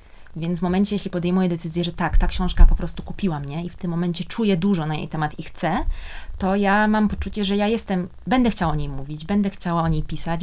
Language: Polish